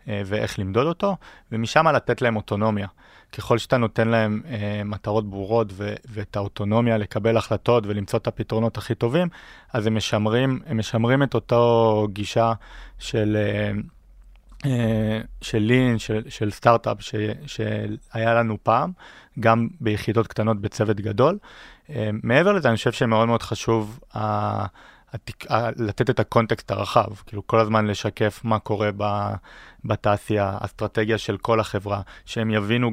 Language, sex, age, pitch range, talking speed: Hebrew, male, 30-49, 105-115 Hz, 135 wpm